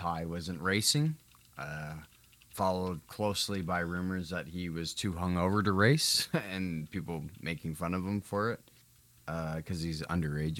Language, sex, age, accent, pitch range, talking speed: English, male, 20-39, American, 80-105 Hz, 155 wpm